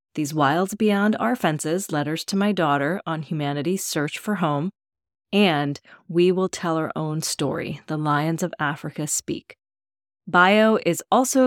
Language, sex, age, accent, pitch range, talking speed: English, female, 30-49, American, 150-190 Hz, 150 wpm